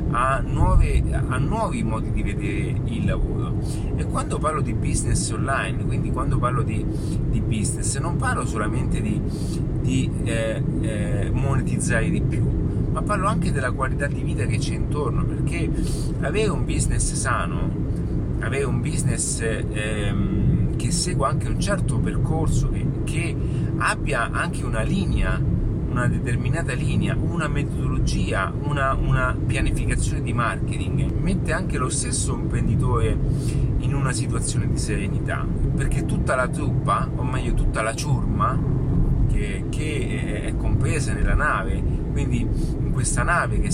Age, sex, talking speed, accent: 40-59, male, 140 wpm, native